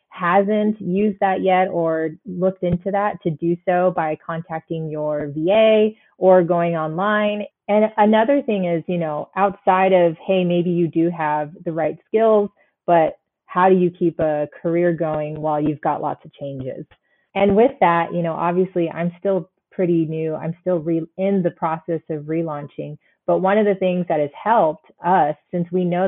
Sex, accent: female, American